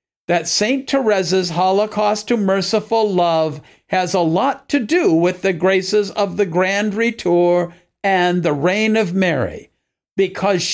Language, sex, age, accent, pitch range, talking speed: English, male, 50-69, American, 175-210 Hz, 140 wpm